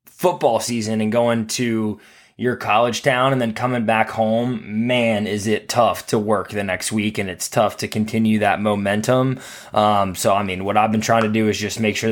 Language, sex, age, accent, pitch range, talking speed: English, male, 20-39, American, 105-120 Hz, 215 wpm